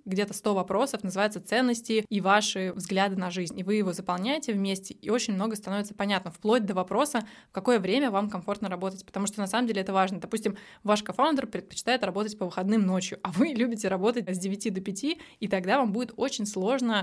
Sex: female